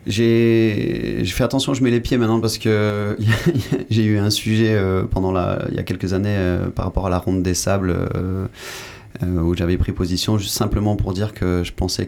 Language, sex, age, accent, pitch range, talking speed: French, male, 30-49, French, 90-115 Hz, 220 wpm